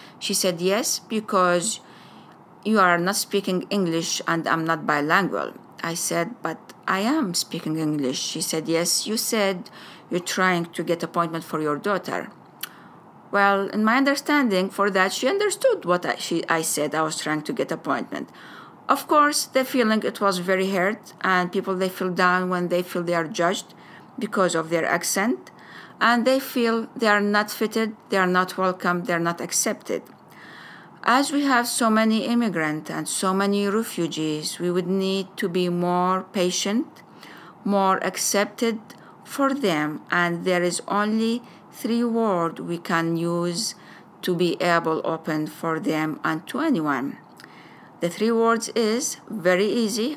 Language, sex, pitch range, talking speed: English, female, 170-220 Hz, 160 wpm